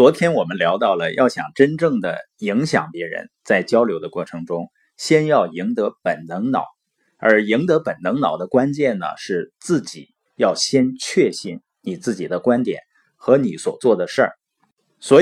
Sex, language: male, Chinese